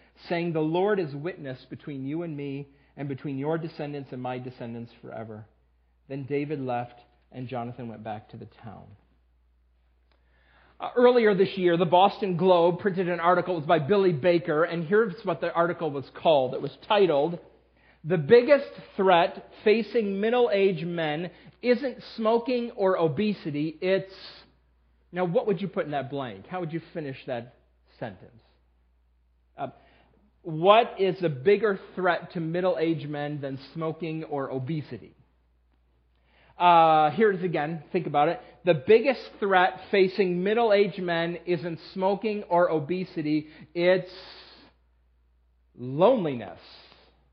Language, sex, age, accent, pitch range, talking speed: English, male, 40-59, American, 130-185 Hz, 140 wpm